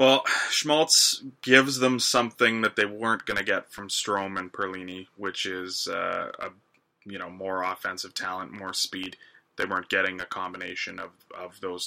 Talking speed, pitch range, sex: 165 wpm, 95-110 Hz, male